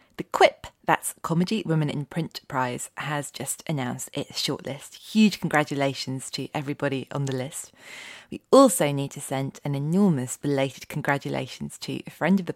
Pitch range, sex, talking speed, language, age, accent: 135-170 Hz, female, 160 wpm, English, 30-49, British